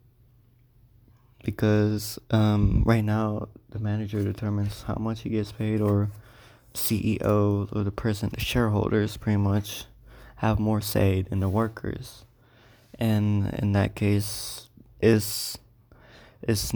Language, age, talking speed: English, 20-39, 120 wpm